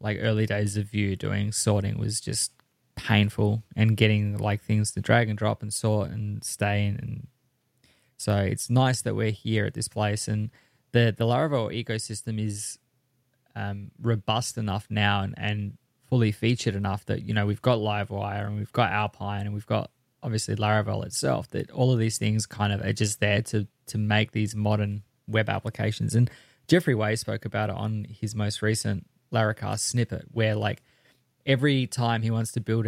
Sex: male